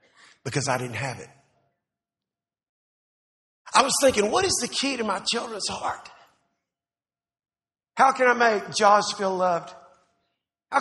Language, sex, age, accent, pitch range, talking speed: English, male, 50-69, American, 220-310 Hz, 135 wpm